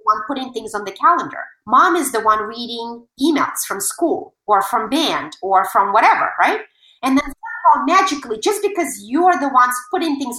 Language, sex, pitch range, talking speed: English, female, 225-345 Hz, 185 wpm